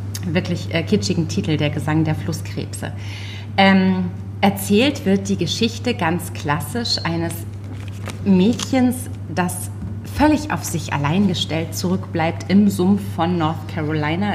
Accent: German